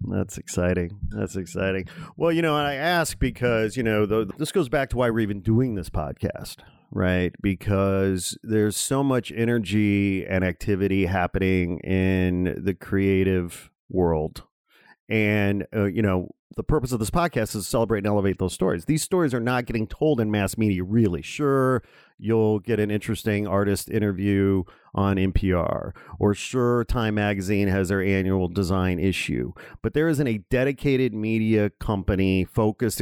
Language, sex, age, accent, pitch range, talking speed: English, male, 40-59, American, 95-120 Hz, 160 wpm